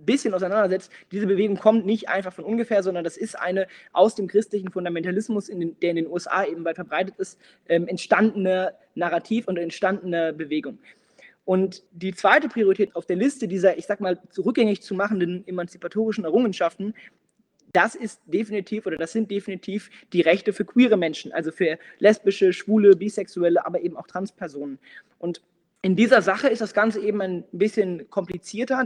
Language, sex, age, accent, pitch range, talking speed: German, male, 20-39, German, 180-215 Hz, 165 wpm